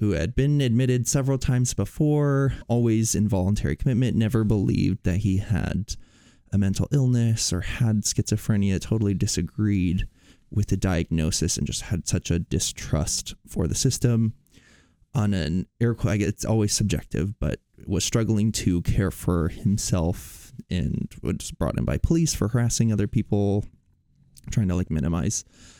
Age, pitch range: 20-39, 90-115 Hz